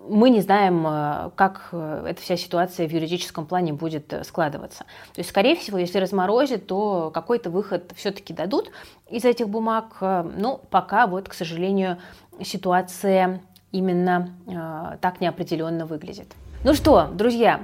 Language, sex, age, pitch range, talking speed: Russian, female, 20-39, 170-205 Hz, 130 wpm